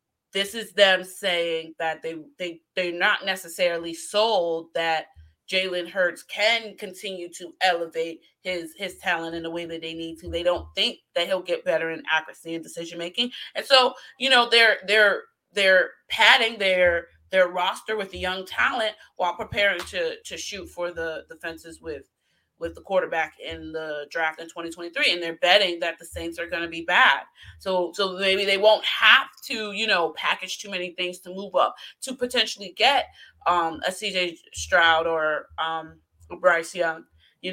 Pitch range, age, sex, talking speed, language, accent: 165-205 Hz, 30-49, female, 180 wpm, English, American